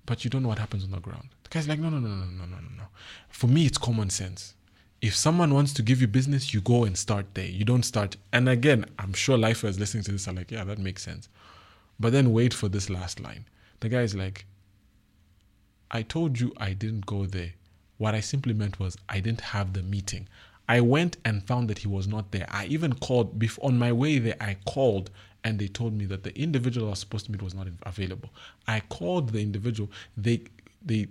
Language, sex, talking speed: English, male, 235 wpm